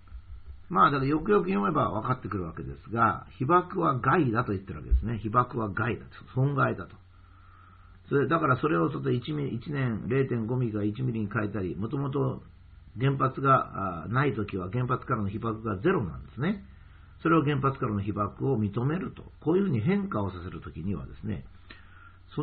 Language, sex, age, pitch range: Japanese, male, 50-69, 90-135 Hz